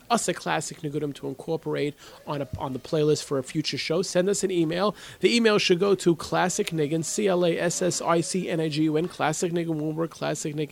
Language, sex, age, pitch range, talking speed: English, male, 30-49, 145-195 Hz, 170 wpm